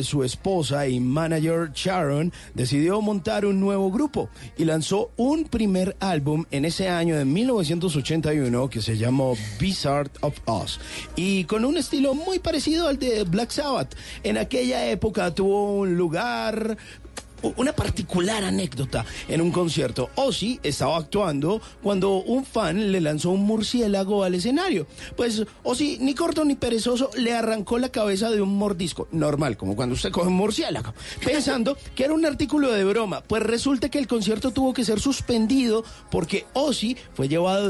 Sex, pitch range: male, 155-225 Hz